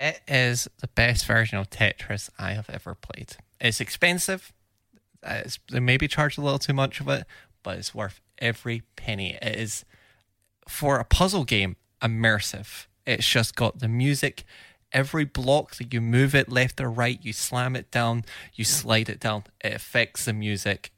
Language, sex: English, male